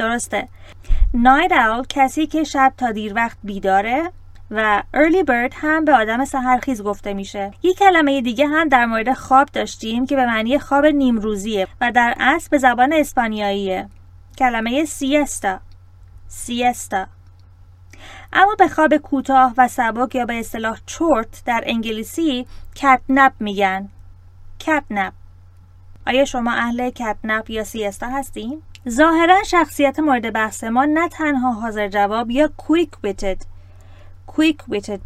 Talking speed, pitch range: 125 wpm, 200-270 Hz